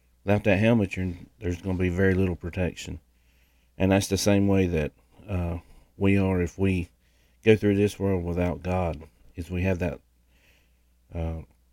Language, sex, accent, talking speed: English, male, American, 165 wpm